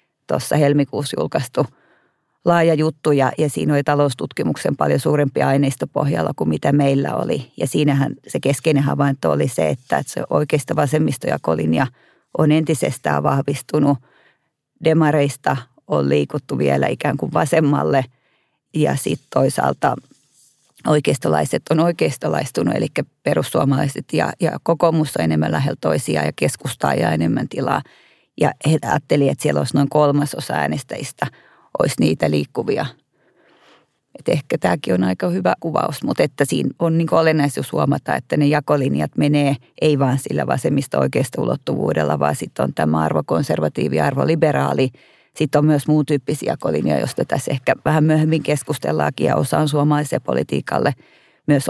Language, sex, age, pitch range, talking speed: Finnish, female, 30-49, 135-150 Hz, 140 wpm